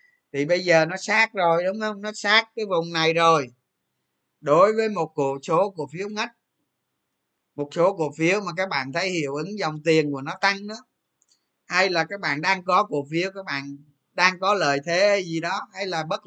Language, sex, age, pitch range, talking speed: Vietnamese, male, 20-39, 145-195 Hz, 210 wpm